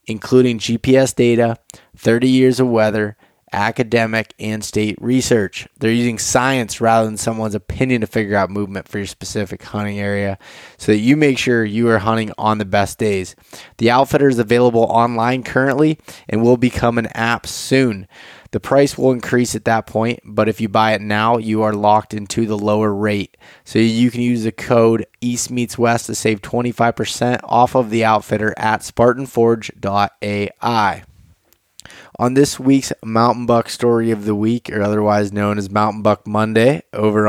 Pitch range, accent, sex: 105-120 Hz, American, male